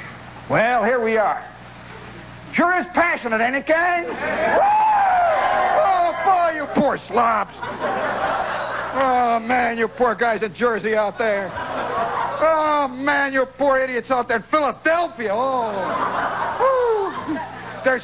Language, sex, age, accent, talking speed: English, male, 50-69, American, 120 wpm